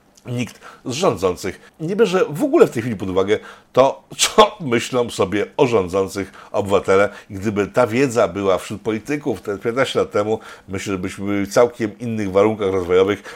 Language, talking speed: Polish, 170 wpm